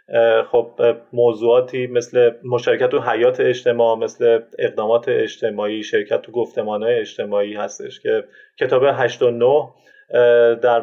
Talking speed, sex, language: 105 wpm, male, Persian